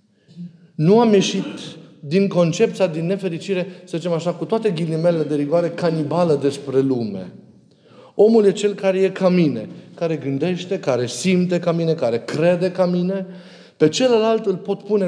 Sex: male